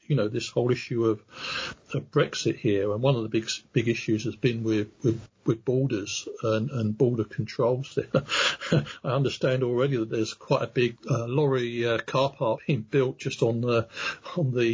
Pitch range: 115-140 Hz